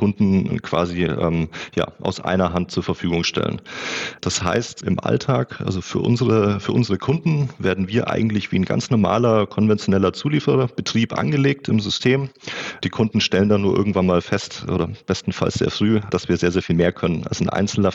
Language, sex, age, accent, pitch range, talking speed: German, male, 30-49, German, 90-110 Hz, 175 wpm